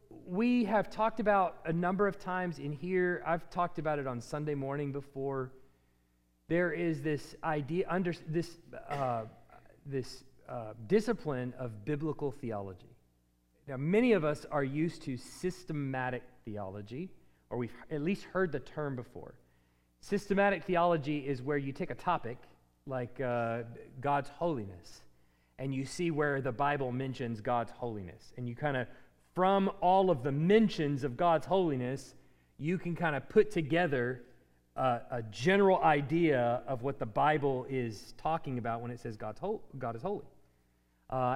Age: 30-49